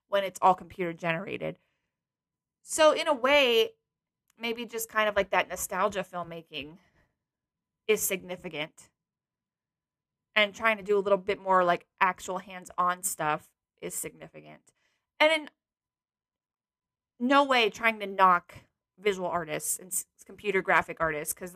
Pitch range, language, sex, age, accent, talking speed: 185-230 Hz, English, female, 20-39, American, 135 wpm